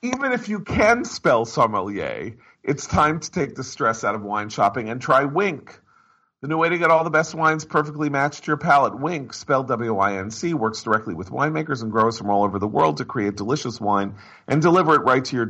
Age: 40-59